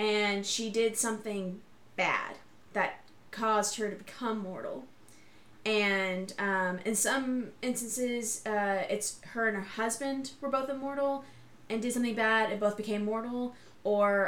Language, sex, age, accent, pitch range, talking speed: English, female, 20-39, American, 195-235 Hz, 145 wpm